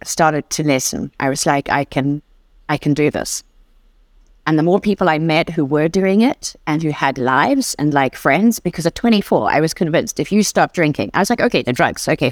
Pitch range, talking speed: 165-235 Hz, 225 wpm